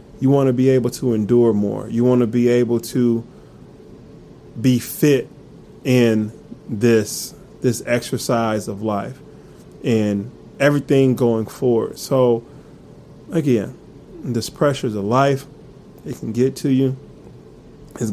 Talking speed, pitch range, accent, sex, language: 130 wpm, 110-125 Hz, American, male, English